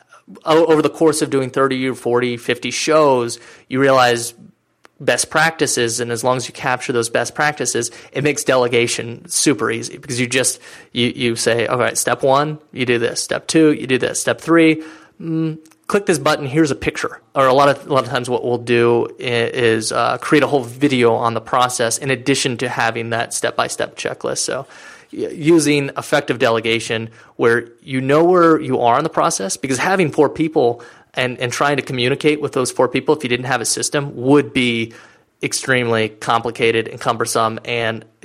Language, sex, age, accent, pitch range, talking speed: English, male, 30-49, American, 120-150 Hz, 190 wpm